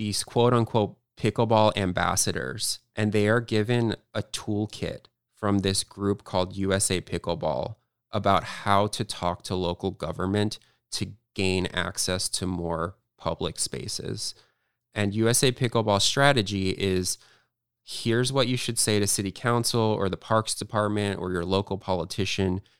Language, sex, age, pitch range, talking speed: English, male, 20-39, 95-115 Hz, 135 wpm